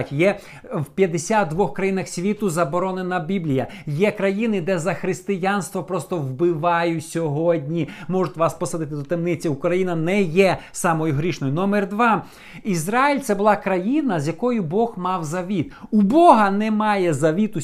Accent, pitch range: native, 170-210 Hz